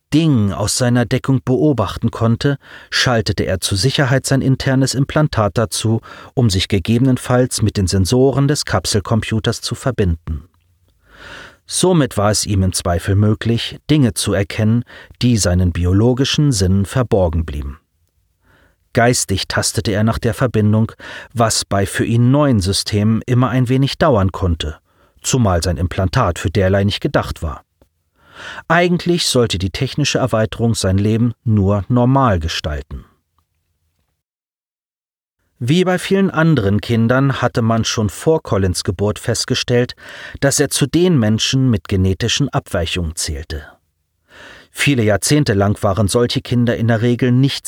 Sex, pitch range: male, 95-130 Hz